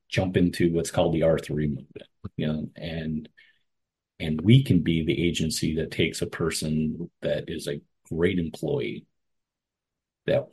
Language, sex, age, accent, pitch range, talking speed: English, male, 40-59, American, 80-90 Hz, 150 wpm